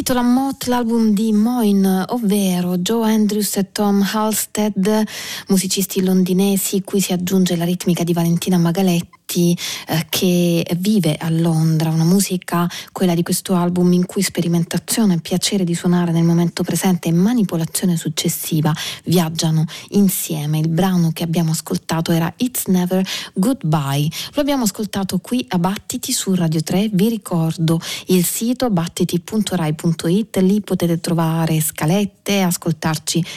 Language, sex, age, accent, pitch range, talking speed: Italian, female, 30-49, native, 165-200 Hz, 130 wpm